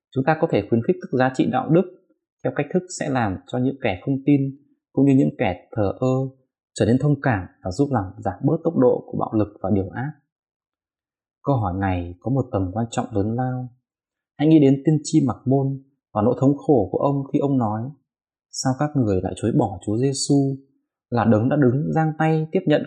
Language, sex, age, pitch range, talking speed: Vietnamese, male, 20-39, 110-140 Hz, 225 wpm